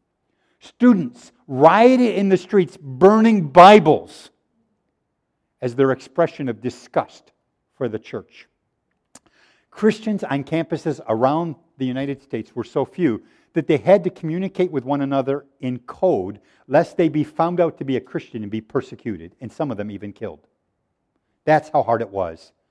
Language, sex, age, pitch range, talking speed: English, male, 50-69, 120-165 Hz, 155 wpm